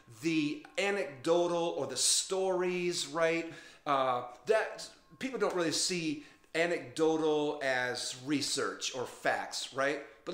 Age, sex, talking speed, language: 40-59, male, 110 wpm, English